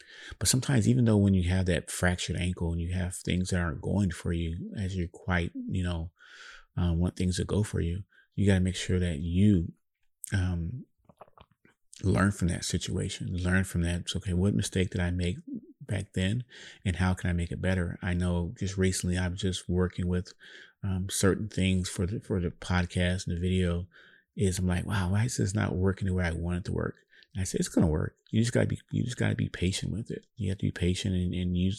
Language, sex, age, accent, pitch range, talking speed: English, male, 30-49, American, 90-100 Hz, 235 wpm